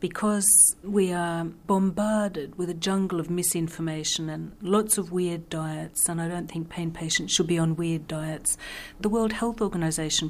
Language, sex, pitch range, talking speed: English, female, 160-180 Hz, 170 wpm